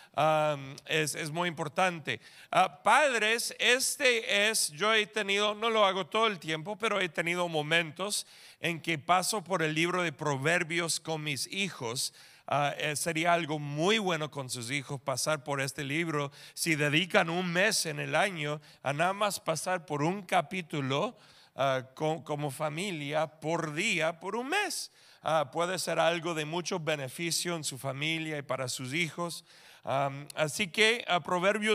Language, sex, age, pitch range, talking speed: English, male, 40-59, 155-205 Hz, 165 wpm